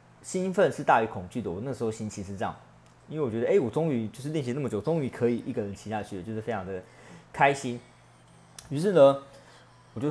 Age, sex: 20-39, male